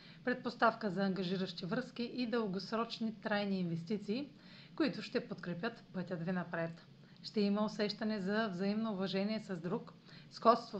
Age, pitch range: 40-59, 180-230 Hz